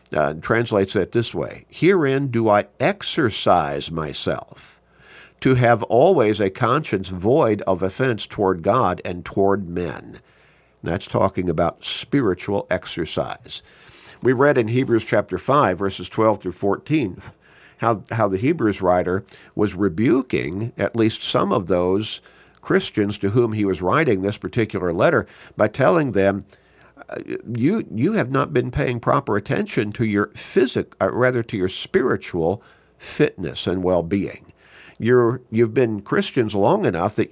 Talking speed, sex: 140 wpm, male